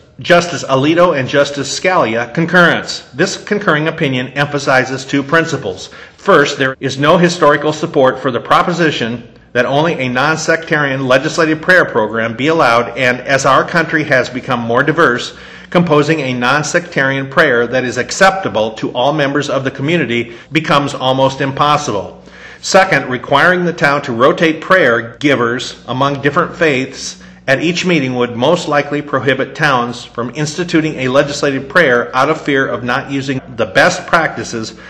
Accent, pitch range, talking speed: American, 130-160 Hz, 150 wpm